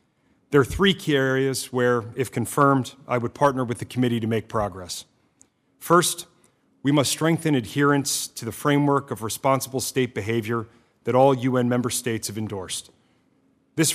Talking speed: 160 wpm